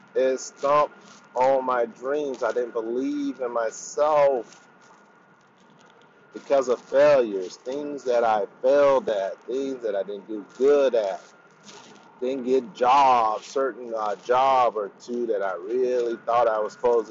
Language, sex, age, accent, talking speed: English, male, 40-59, American, 140 wpm